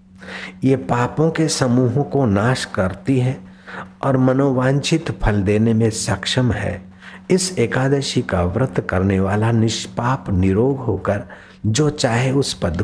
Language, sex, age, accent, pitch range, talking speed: Hindi, male, 60-79, native, 95-140 Hz, 130 wpm